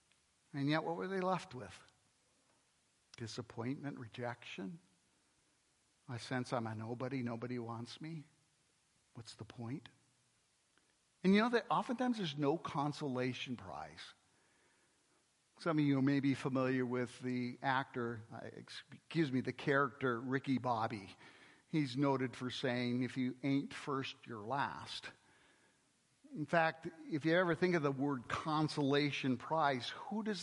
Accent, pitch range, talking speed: American, 125-185 Hz, 130 wpm